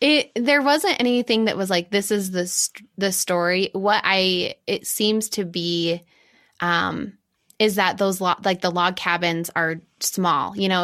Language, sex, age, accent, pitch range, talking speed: English, female, 20-39, American, 170-205 Hz, 175 wpm